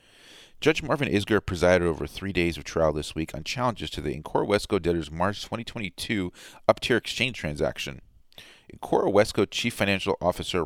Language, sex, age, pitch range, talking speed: English, male, 40-59, 80-95 Hz, 160 wpm